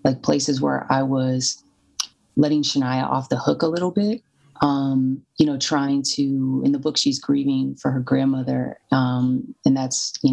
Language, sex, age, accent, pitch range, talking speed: English, female, 30-49, American, 125-145 Hz, 175 wpm